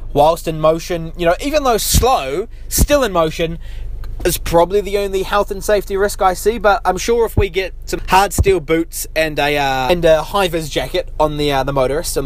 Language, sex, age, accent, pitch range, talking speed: English, male, 20-39, Australian, 140-200 Hz, 215 wpm